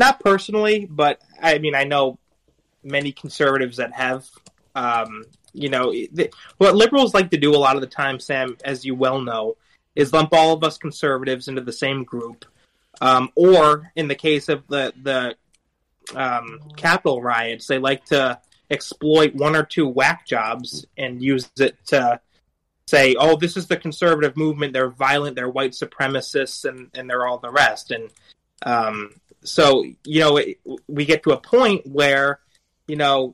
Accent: American